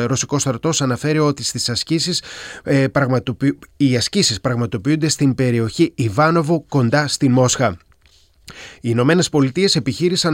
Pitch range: 125-160 Hz